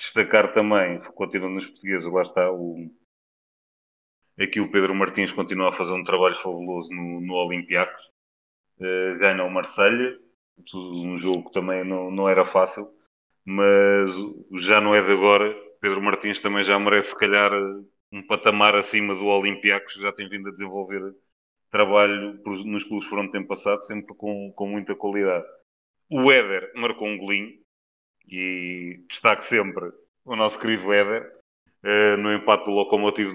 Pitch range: 95-110 Hz